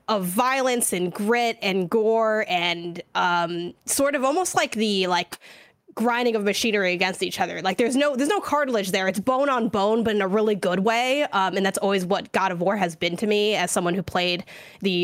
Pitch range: 180-225 Hz